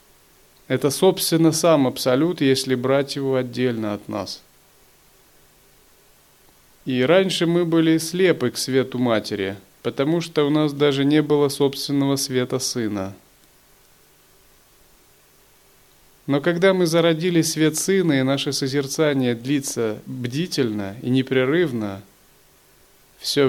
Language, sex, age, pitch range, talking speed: Russian, male, 30-49, 125-160 Hz, 105 wpm